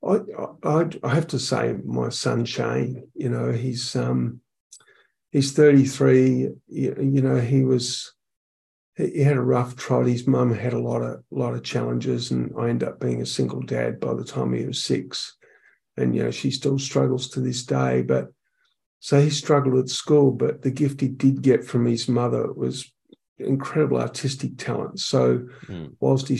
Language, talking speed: English, 180 wpm